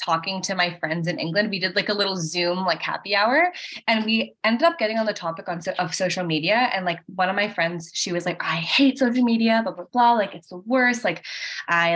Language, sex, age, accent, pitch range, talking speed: English, female, 10-29, American, 165-215 Hz, 250 wpm